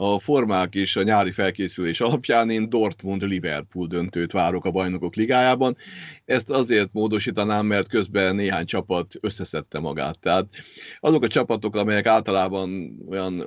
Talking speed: 135 wpm